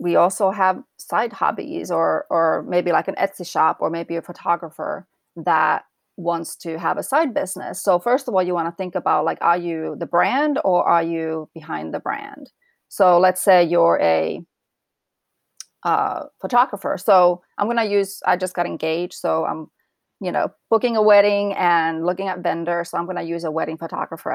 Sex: female